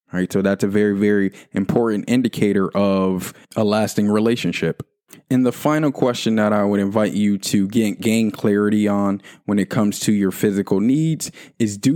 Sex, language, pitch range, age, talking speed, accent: male, English, 100-120 Hz, 20-39, 180 wpm, American